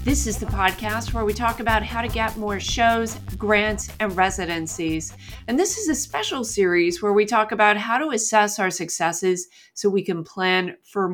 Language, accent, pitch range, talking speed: English, American, 175-220 Hz, 195 wpm